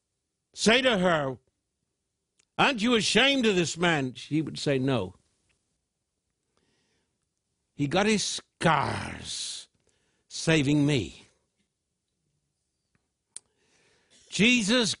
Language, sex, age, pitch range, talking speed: English, male, 60-79, 145-205 Hz, 80 wpm